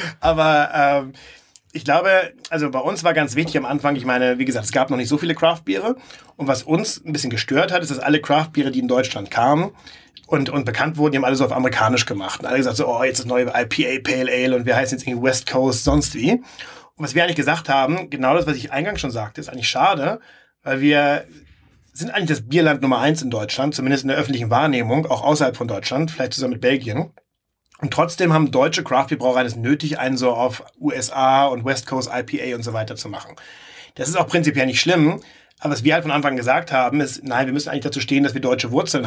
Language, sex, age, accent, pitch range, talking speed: German, male, 30-49, German, 130-150 Hz, 240 wpm